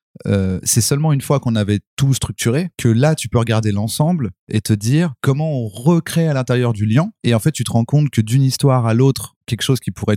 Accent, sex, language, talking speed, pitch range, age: French, male, French, 240 wpm, 105-135 Hz, 30-49